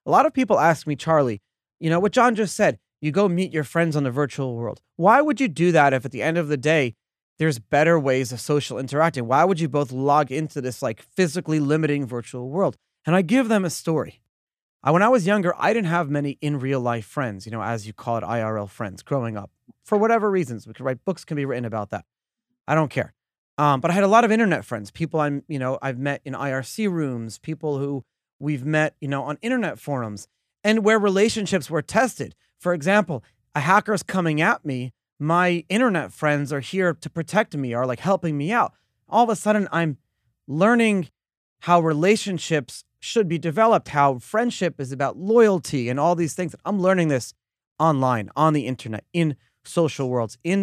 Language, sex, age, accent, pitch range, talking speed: English, male, 30-49, American, 130-180 Hz, 210 wpm